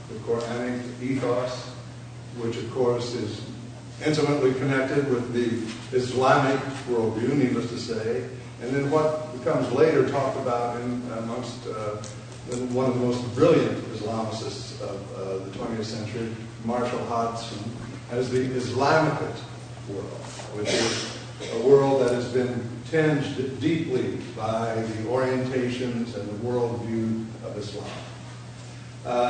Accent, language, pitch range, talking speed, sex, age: American, English, 115-130 Hz, 125 wpm, male, 50-69